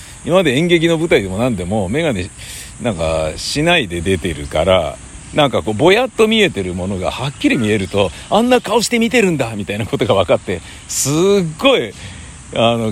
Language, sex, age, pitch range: Japanese, male, 60-79, 95-145 Hz